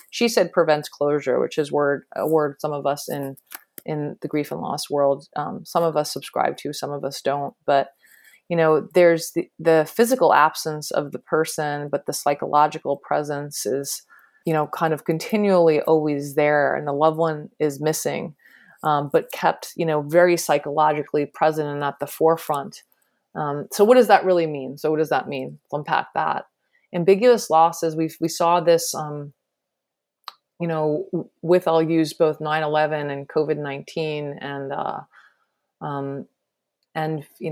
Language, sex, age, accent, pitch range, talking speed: English, female, 30-49, American, 145-165 Hz, 170 wpm